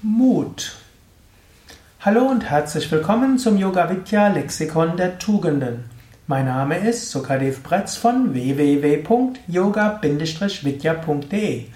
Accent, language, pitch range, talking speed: German, German, 145-195 Hz, 95 wpm